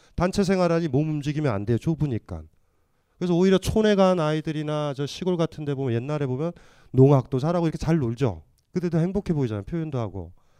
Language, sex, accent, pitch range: Korean, male, native, 110-160 Hz